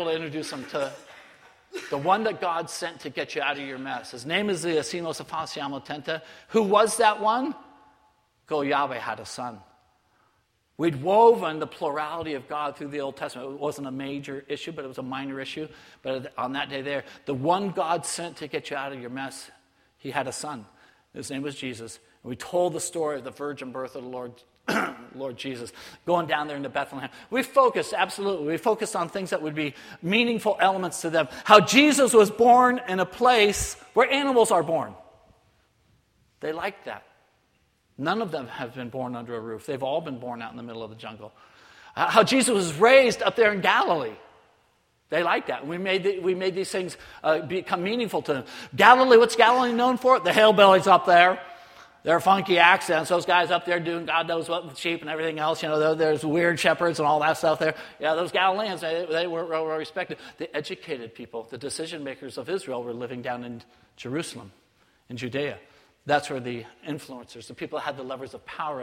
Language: English